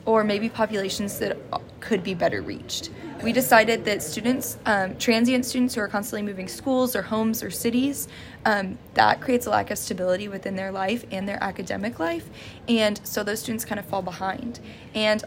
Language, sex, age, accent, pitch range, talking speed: English, female, 20-39, American, 195-230 Hz, 185 wpm